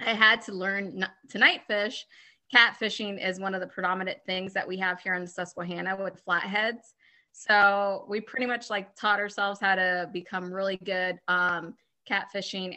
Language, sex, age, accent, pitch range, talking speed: English, female, 20-39, American, 185-210 Hz, 170 wpm